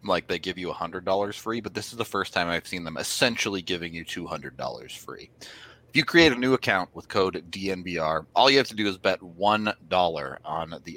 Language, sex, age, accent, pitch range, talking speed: English, male, 30-49, American, 90-115 Hz, 240 wpm